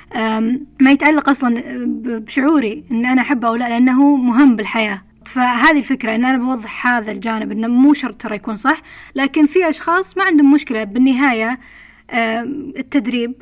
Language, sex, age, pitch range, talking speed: English, female, 20-39, 225-275 Hz, 150 wpm